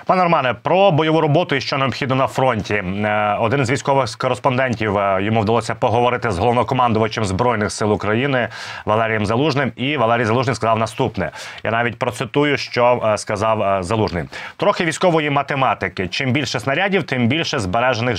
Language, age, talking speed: Ukrainian, 30-49, 145 wpm